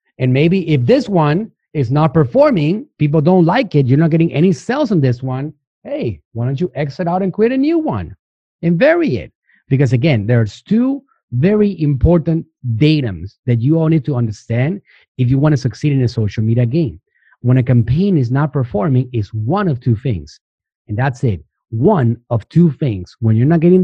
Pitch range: 120-170 Hz